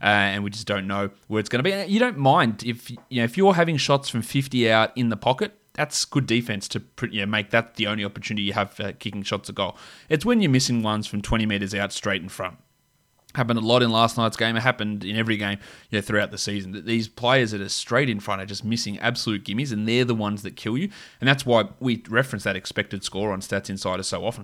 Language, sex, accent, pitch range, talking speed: English, male, Australian, 105-125 Hz, 245 wpm